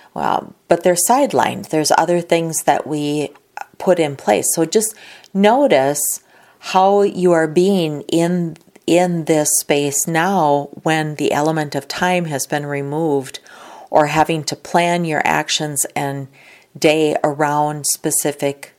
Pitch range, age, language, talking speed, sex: 145-175 Hz, 40-59, English, 135 wpm, female